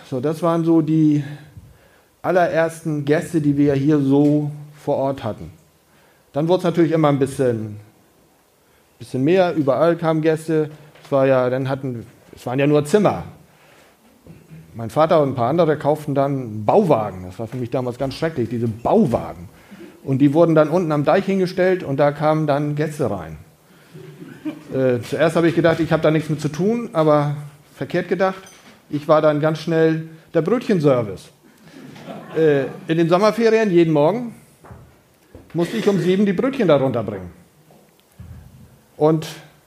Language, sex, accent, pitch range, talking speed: German, male, German, 135-170 Hz, 150 wpm